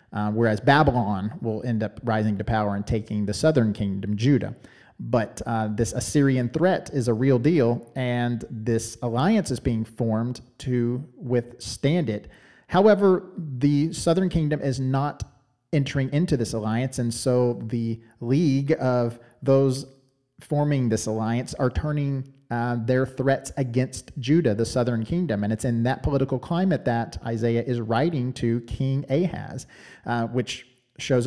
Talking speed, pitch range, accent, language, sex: 150 wpm, 115-135 Hz, American, English, male